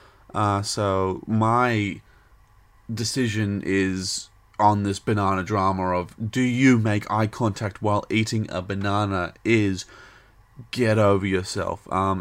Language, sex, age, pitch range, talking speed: English, male, 20-39, 100-115 Hz, 120 wpm